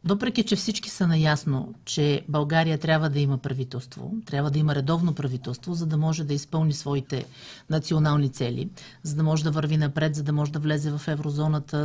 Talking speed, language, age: 185 wpm, Bulgarian, 40-59